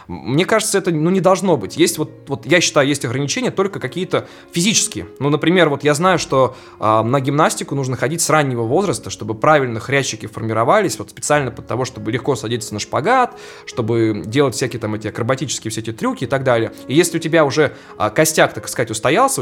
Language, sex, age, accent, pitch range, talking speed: Russian, male, 20-39, native, 120-165 Hz, 190 wpm